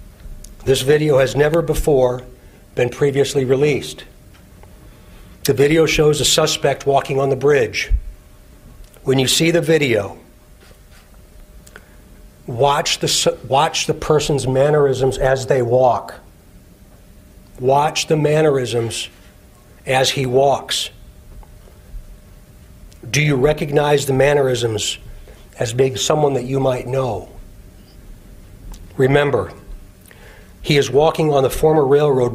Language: English